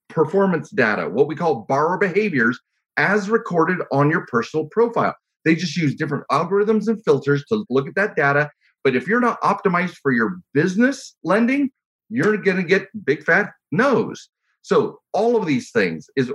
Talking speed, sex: 175 wpm, male